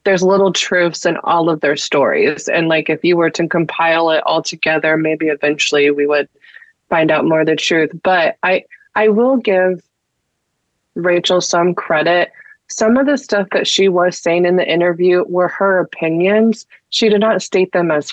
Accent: American